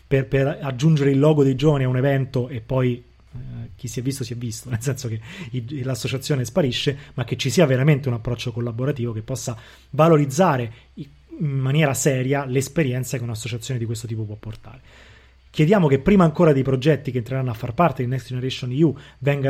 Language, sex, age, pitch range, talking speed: Italian, male, 30-49, 125-155 Hz, 195 wpm